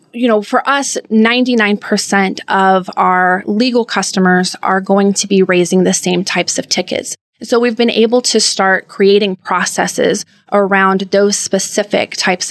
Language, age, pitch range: English, 20-39, 185-215 Hz